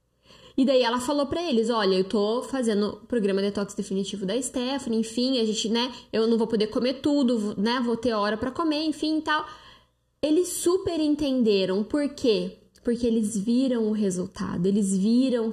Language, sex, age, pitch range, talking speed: Portuguese, female, 10-29, 195-265 Hz, 180 wpm